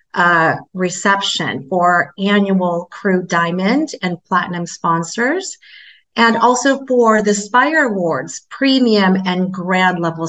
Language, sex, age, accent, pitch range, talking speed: English, female, 30-49, American, 175-215 Hz, 110 wpm